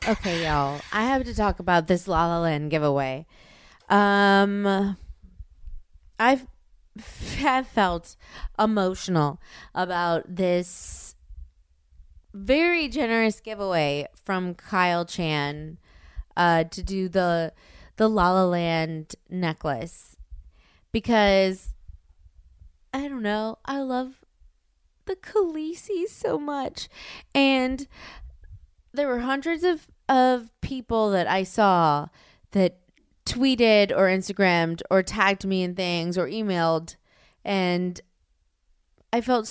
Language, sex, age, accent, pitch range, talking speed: English, female, 20-39, American, 160-210 Hz, 105 wpm